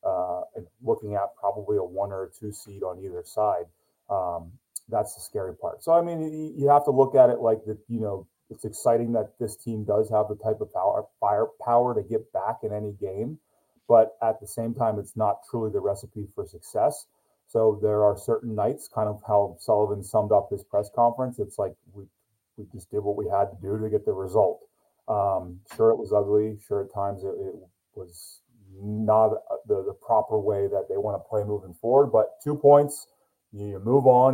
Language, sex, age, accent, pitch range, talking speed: English, male, 30-49, American, 105-135 Hz, 210 wpm